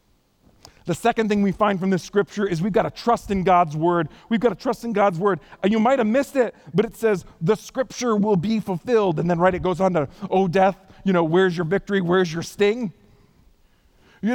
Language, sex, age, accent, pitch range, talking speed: English, male, 40-59, American, 180-265 Hz, 230 wpm